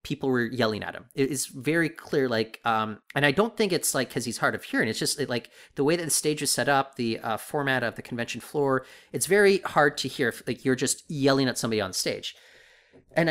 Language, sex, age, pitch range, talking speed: English, male, 30-49, 135-195 Hz, 250 wpm